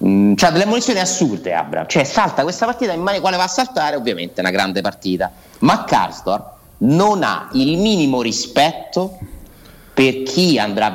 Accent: native